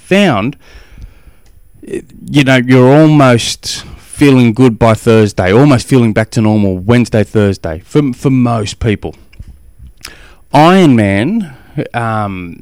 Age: 20-39